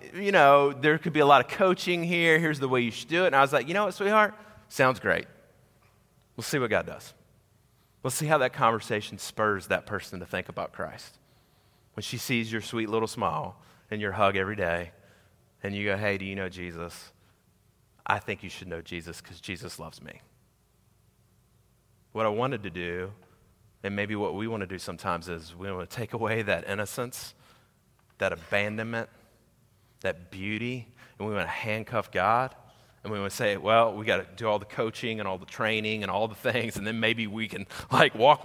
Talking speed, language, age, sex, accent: 210 wpm, English, 30-49, male, American